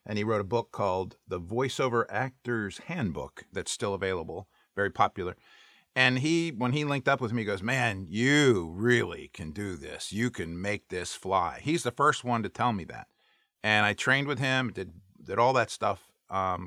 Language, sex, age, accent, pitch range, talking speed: English, male, 50-69, American, 95-120 Hz, 200 wpm